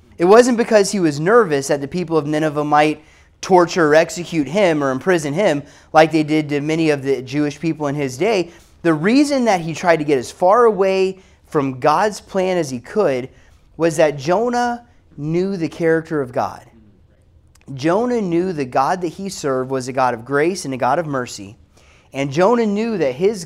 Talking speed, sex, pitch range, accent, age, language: 195 wpm, male, 130-175 Hz, American, 30-49, English